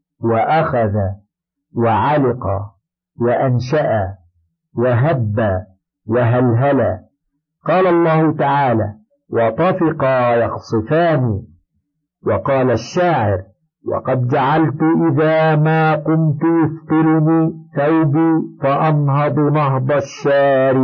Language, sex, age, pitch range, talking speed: Arabic, male, 50-69, 120-160 Hz, 65 wpm